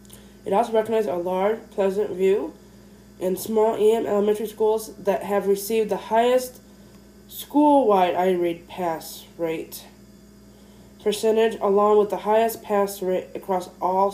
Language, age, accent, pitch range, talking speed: English, 20-39, American, 185-215 Hz, 130 wpm